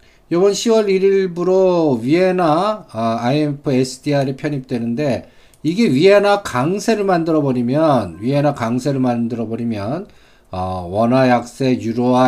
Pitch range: 120-170 Hz